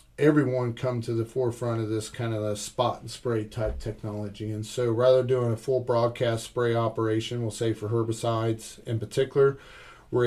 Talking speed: 185 wpm